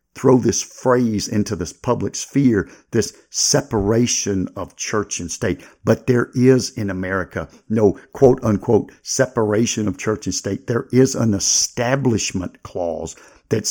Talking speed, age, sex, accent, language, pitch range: 140 wpm, 50-69, male, American, English, 95-120 Hz